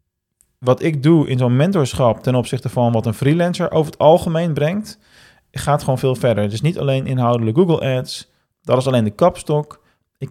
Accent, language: Dutch, Dutch